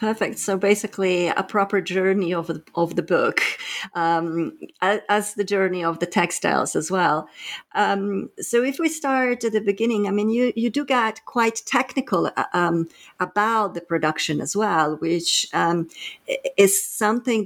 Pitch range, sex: 165-200 Hz, female